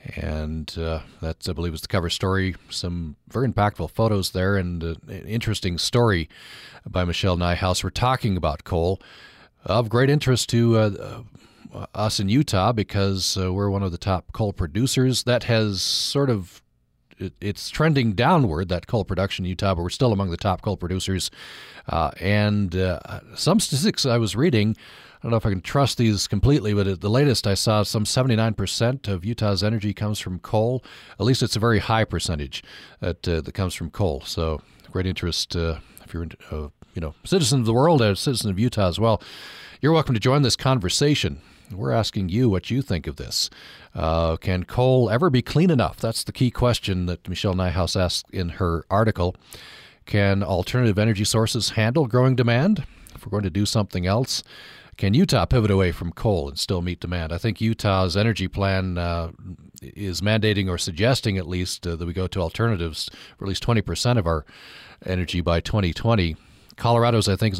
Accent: American